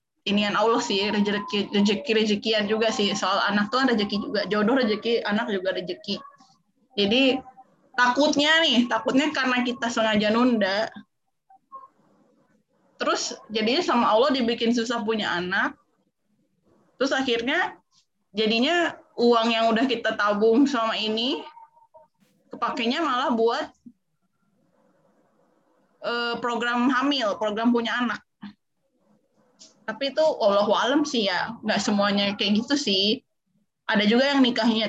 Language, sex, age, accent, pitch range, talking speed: Indonesian, female, 20-39, native, 205-255 Hz, 115 wpm